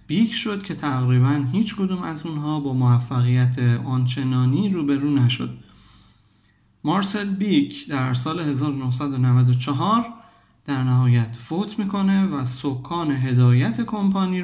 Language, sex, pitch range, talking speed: Persian, male, 130-185 Hz, 110 wpm